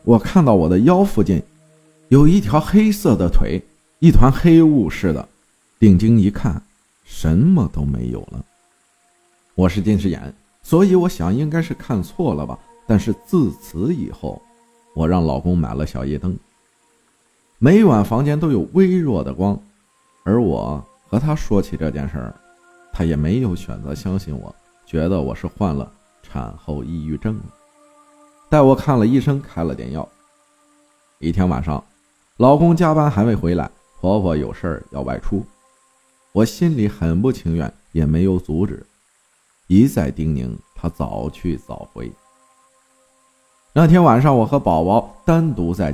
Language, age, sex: Chinese, 50-69, male